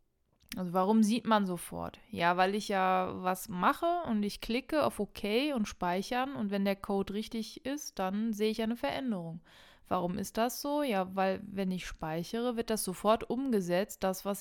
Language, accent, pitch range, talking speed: German, German, 185-225 Hz, 185 wpm